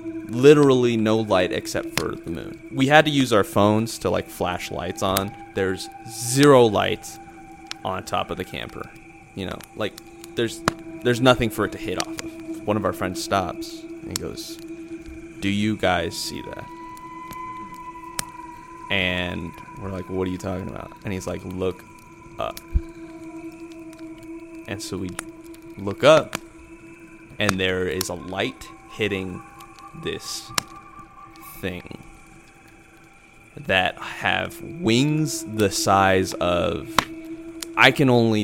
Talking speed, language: 135 wpm, English